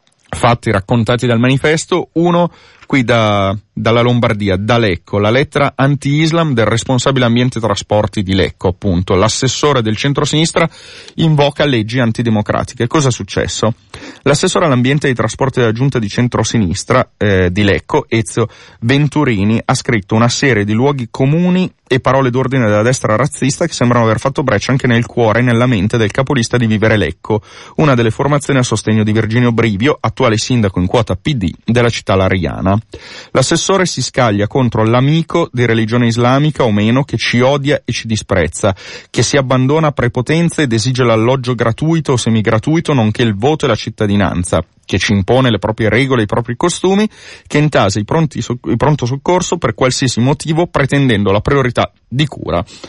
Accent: native